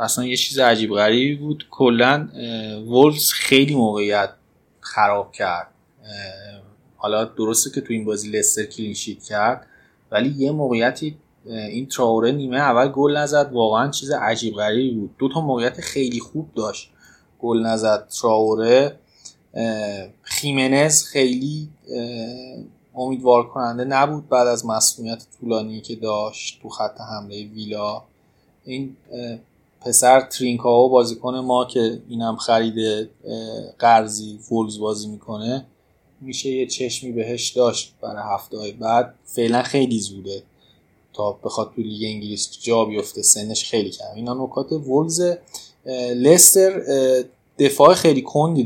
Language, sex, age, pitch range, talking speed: Persian, male, 20-39, 110-135 Hz, 120 wpm